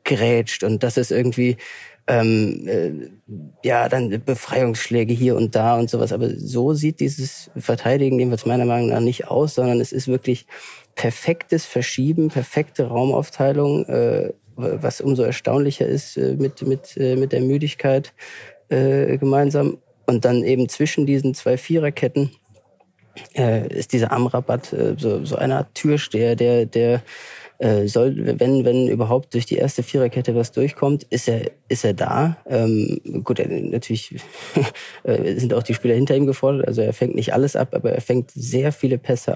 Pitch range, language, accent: 115-135 Hz, German, German